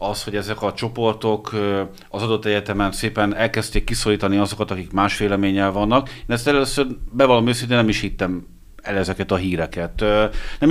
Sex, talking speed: male, 165 wpm